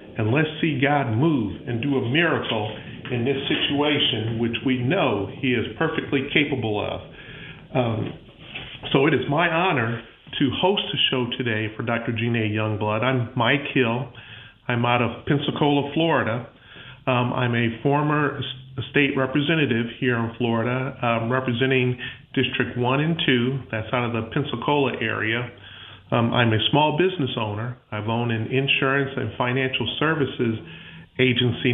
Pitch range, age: 115-140 Hz, 40-59